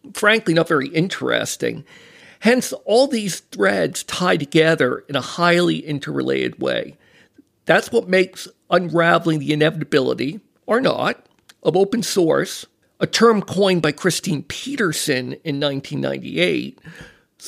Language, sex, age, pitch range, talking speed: English, male, 50-69, 150-200 Hz, 115 wpm